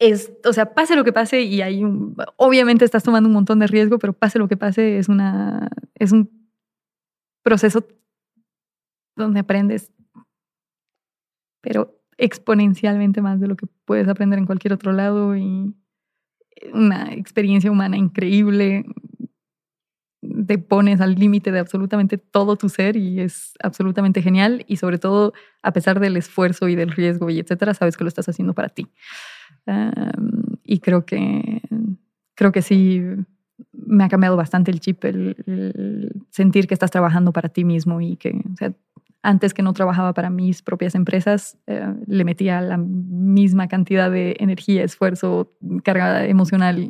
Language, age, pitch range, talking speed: Spanish, 20-39, 180-215 Hz, 155 wpm